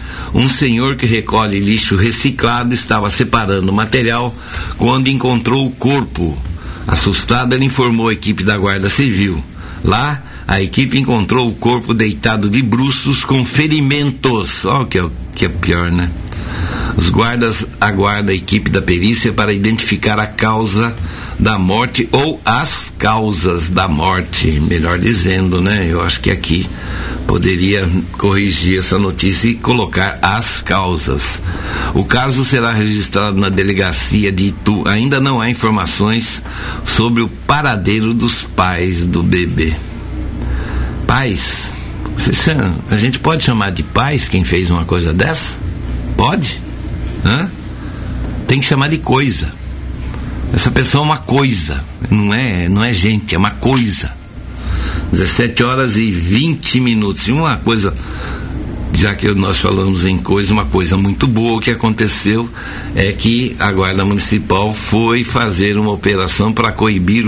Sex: male